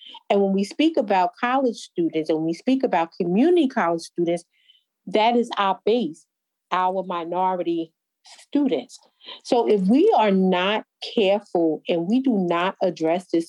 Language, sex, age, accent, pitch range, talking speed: English, female, 40-59, American, 170-220 Hz, 145 wpm